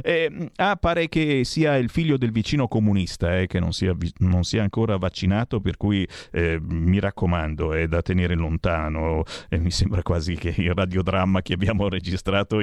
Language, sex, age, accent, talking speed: Italian, male, 40-59, native, 175 wpm